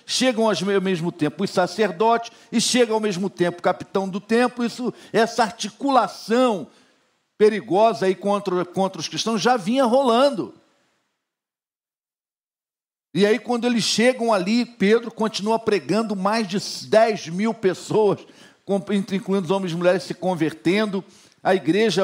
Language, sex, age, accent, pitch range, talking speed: Portuguese, male, 60-79, Brazilian, 160-215 Hz, 130 wpm